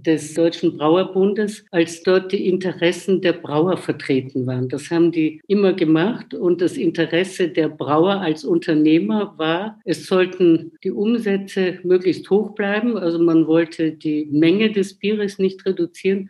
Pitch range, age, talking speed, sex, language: 160-195 Hz, 60-79, 145 wpm, female, German